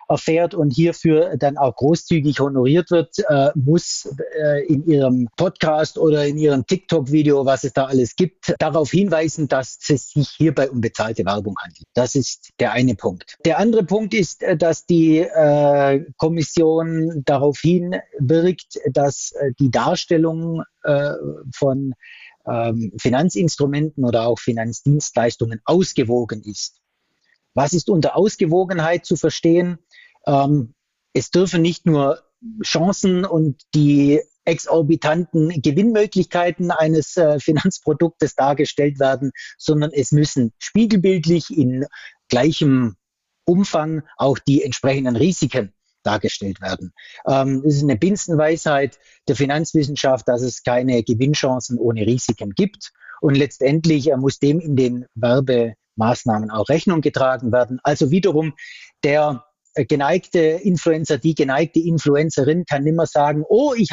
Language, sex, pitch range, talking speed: German, male, 135-165 Hz, 120 wpm